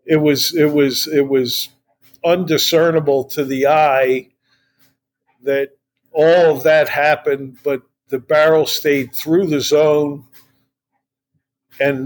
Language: English